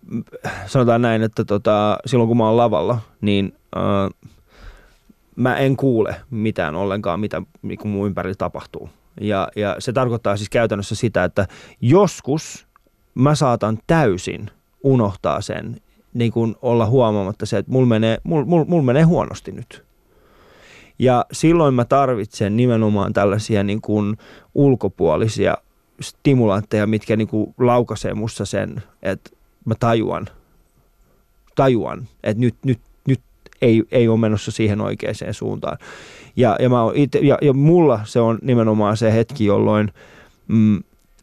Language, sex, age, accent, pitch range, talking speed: Finnish, male, 20-39, native, 105-125 Hz, 135 wpm